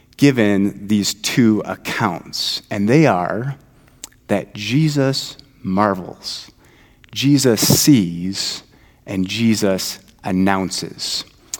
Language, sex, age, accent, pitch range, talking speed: English, male, 30-49, American, 100-130 Hz, 80 wpm